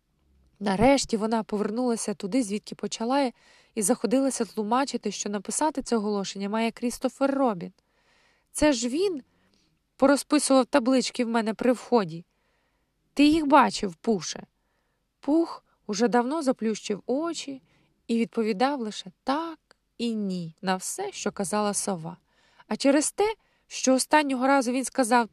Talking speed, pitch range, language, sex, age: 130 wpm, 210-280 Hz, Ukrainian, female, 20-39